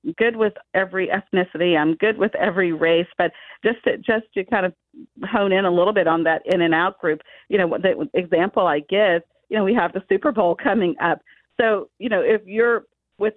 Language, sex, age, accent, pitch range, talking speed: English, female, 40-59, American, 185-235 Hz, 215 wpm